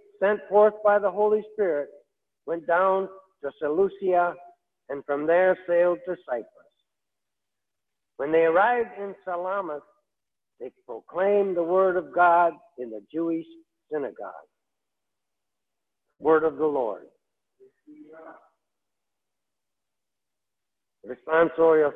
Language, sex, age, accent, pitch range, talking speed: English, male, 60-79, American, 165-215 Hz, 100 wpm